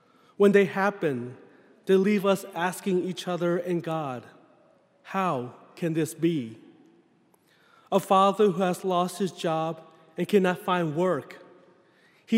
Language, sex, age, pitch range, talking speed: English, male, 30-49, 170-200 Hz, 130 wpm